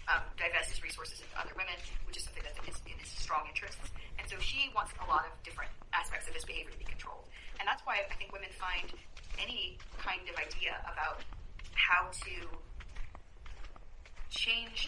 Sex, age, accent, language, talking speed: female, 30-49, American, English, 185 wpm